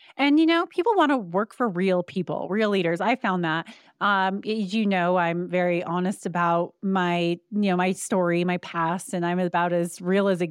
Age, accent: 30-49, American